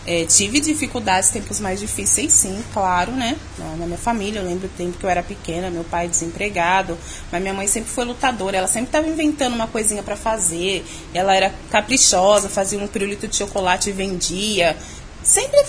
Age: 20-39